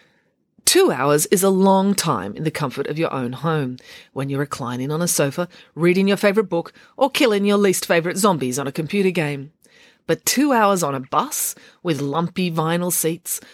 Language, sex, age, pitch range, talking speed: English, female, 40-59, 150-205 Hz, 190 wpm